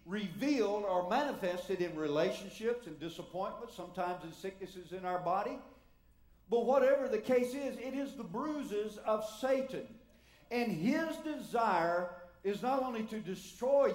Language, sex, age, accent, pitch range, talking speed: English, male, 50-69, American, 180-240 Hz, 140 wpm